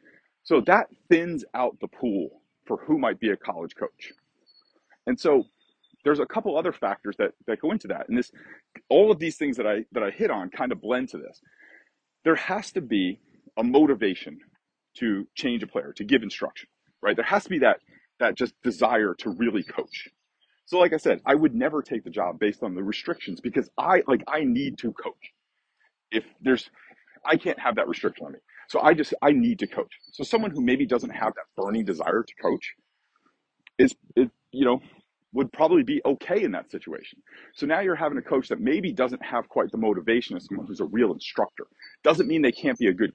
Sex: male